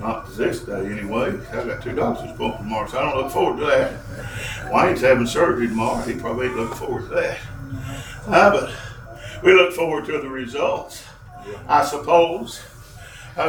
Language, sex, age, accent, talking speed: English, male, 50-69, American, 175 wpm